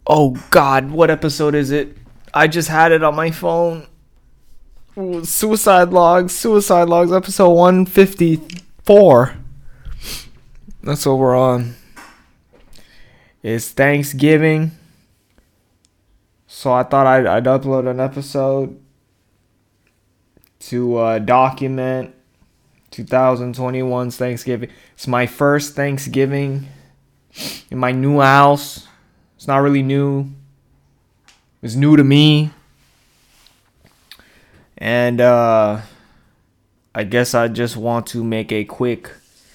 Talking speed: 100 wpm